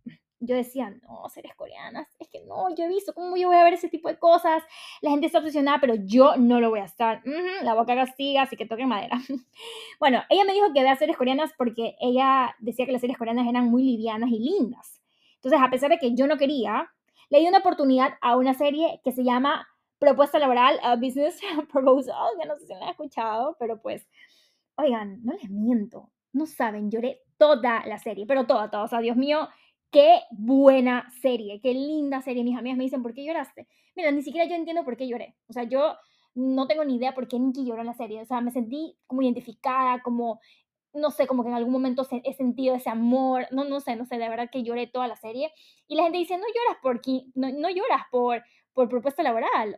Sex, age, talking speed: female, 10-29, 230 wpm